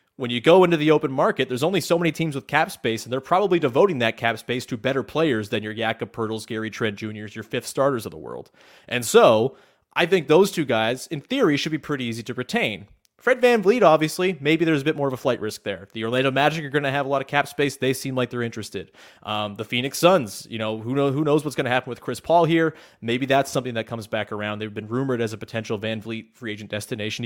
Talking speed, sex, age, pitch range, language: 265 wpm, male, 30-49, 110-150 Hz, English